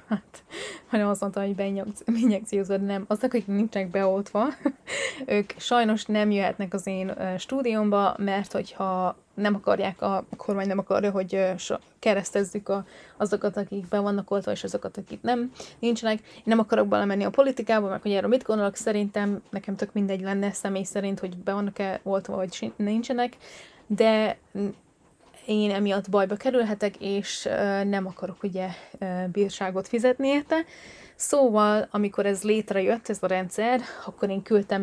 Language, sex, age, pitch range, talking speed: Hungarian, female, 20-39, 195-215 Hz, 150 wpm